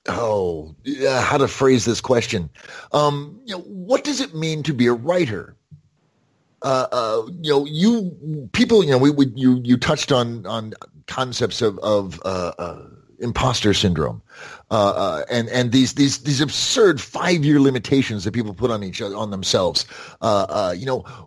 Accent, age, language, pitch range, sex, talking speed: American, 30-49, English, 115-160 Hz, male, 175 wpm